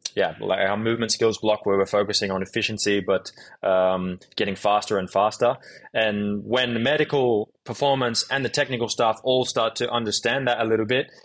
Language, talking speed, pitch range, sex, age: English, 180 wpm, 105-125 Hz, male, 20-39